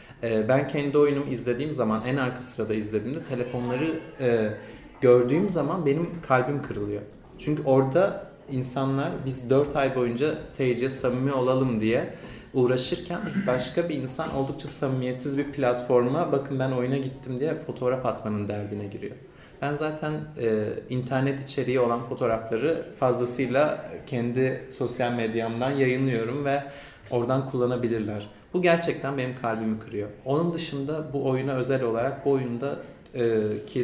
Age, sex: 30-49, male